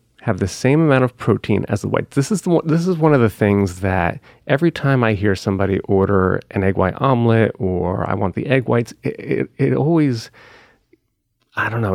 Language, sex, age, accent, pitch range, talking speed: English, male, 30-49, American, 100-130 Hz, 215 wpm